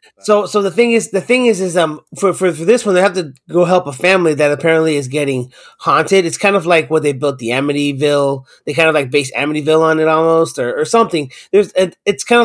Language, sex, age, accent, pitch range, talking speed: English, male, 30-49, American, 150-200 Hz, 260 wpm